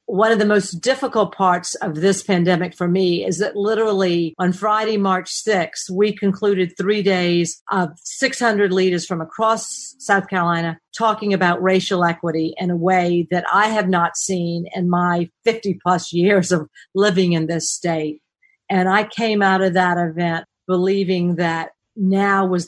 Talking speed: 165 wpm